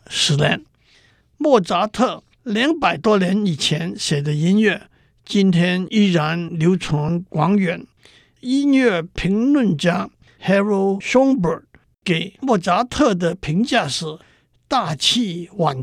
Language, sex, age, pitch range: Chinese, male, 60-79, 165-220 Hz